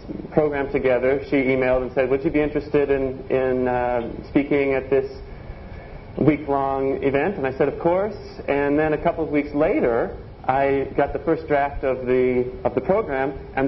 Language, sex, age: Spanish, male, 40-59